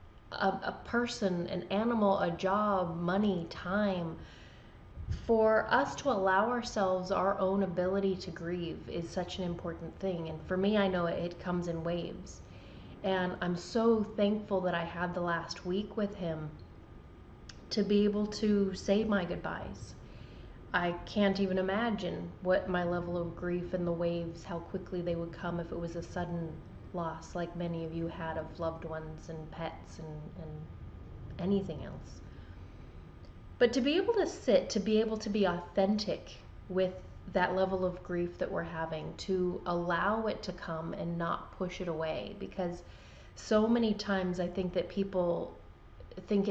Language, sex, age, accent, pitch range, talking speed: English, female, 30-49, American, 170-195 Hz, 165 wpm